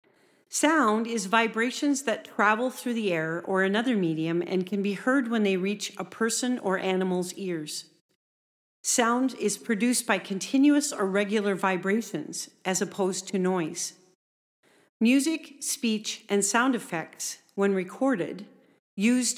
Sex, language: female, English